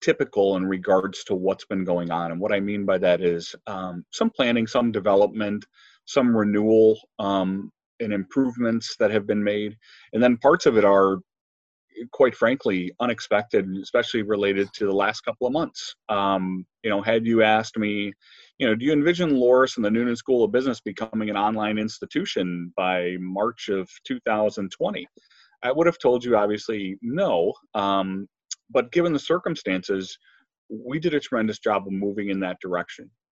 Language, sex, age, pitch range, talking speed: English, male, 30-49, 95-115 Hz, 170 wpm